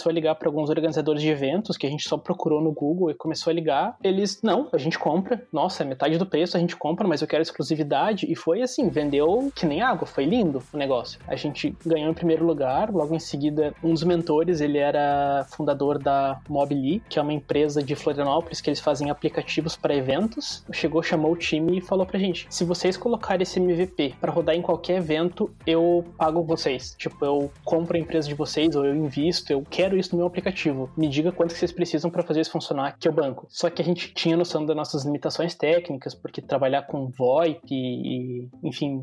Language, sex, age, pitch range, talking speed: Portuguese, male, 20-39, 150-175 Hz, 215 wpm